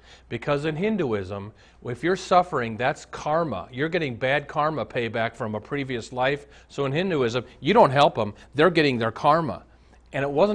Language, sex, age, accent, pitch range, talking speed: English, male, 40-59, American, 105-155 Hz, 175 wpm